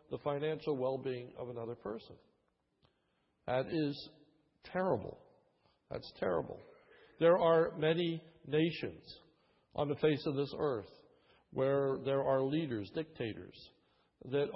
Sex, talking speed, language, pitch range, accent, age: male, 110 wpm, English, 130-165 Hz, American, 60-79